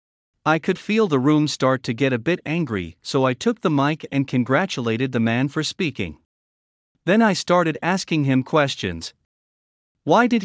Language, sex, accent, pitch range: English, male, American, 115-165 Hz